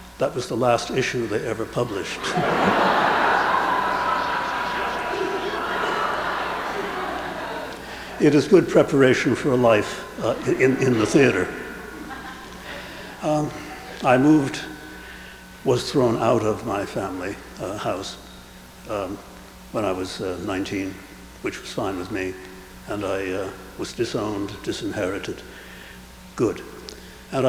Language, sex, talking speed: English, male, 110 wpm